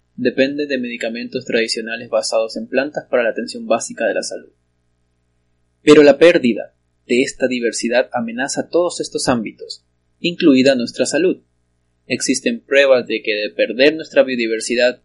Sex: male